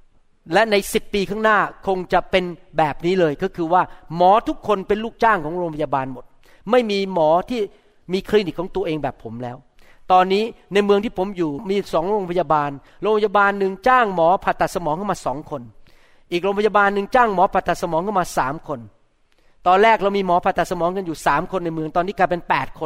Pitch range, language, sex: 170-225 Hz, Thai, male